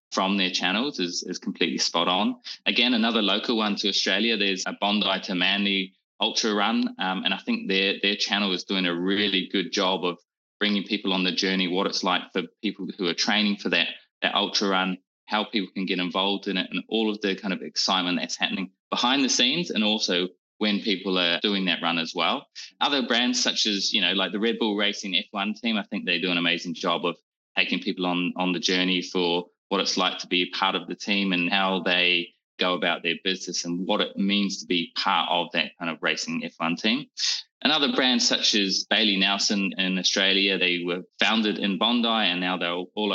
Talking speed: 220 wpm